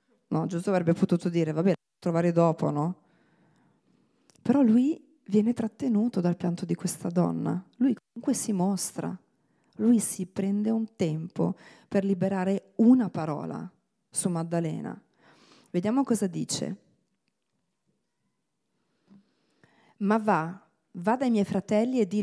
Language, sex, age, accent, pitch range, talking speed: Italian, female, 40-59, native, 170-220 Hz, 125 wpm